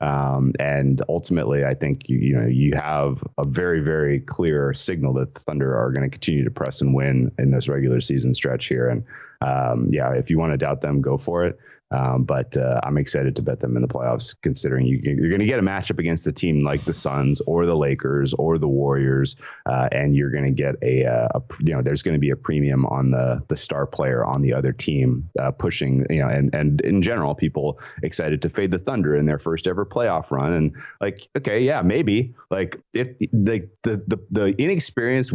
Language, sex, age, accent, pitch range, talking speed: English, male, 30-49, American, 70-100 Hz, 225 wpm